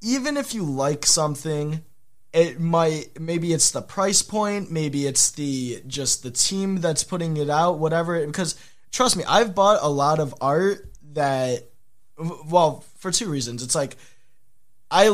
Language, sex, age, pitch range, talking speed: English, male, 20-39, 135-170 Hz, 160 wpm